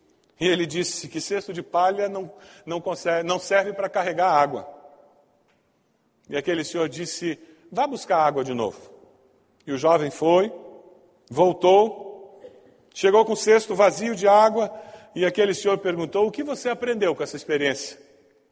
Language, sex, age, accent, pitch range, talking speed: Portuguese, male, 40-59, Brazilian, 165-205 Hz, 145 wpm